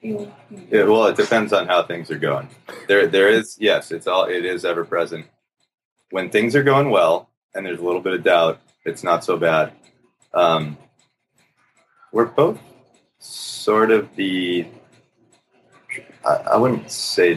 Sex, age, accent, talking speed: male, 30-49, American, 155 wpm